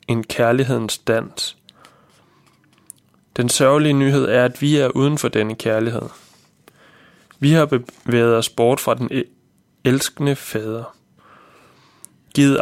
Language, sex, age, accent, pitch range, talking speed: Danish, male, 20-39, native, 115-135 Hz, 115 wpm